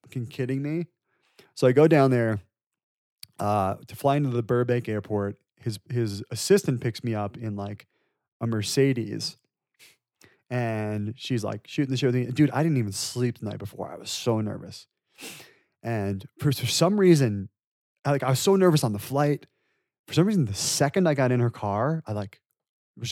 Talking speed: 175 wpm